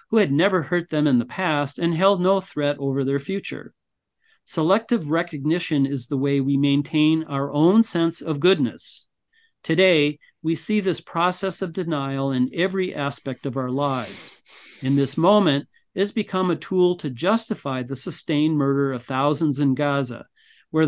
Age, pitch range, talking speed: 40-59, 140-180 Hz, 165 wpm